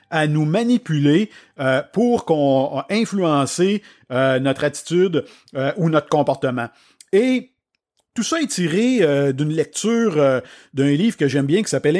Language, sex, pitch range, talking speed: French, male, 145-200 Hz, 145 wpm